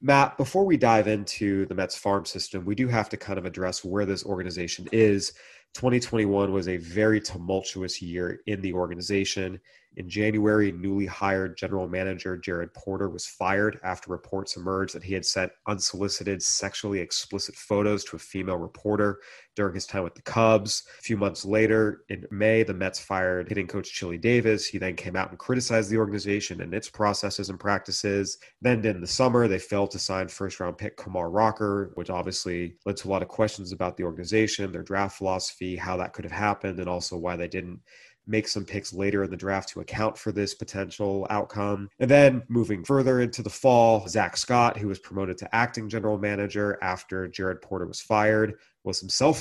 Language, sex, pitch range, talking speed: English, male, 90-105 Hz, 195 wpm